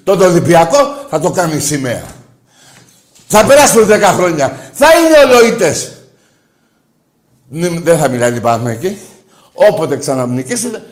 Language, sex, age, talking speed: Greek, male, 60-79, 110 wpm